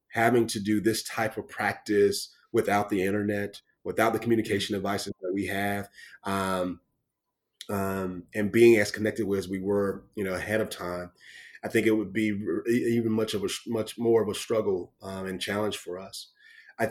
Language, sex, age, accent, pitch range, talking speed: English, male, 30-49, American, 100-120 Hz, 185 wpm